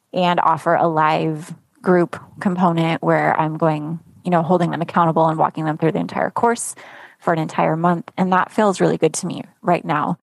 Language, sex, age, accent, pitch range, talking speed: English, female, 20-39, American, 165-195 Hz, 200 wpm